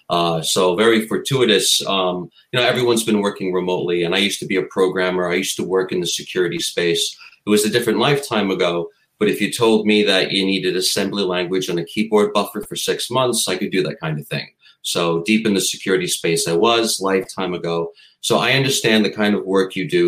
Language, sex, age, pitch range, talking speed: English, male, 30-49, 85-110 Hz, 225 wpm